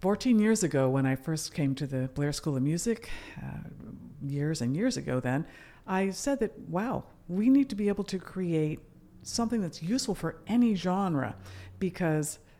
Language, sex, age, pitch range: English, female, 50-69, 145-195 Hz